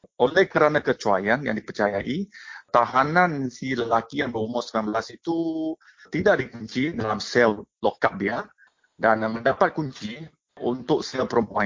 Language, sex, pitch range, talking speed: English, male, 120-175 Hz, 125 wpm